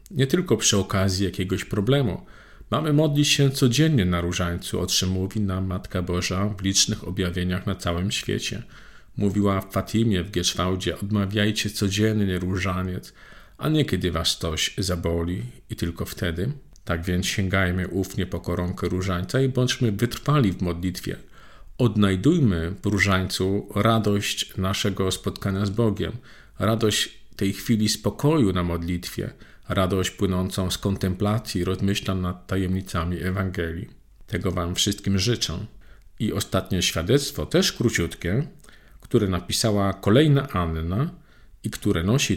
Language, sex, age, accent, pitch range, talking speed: Polish, male, 50-69, native, 90-120 Hz, 130 wpm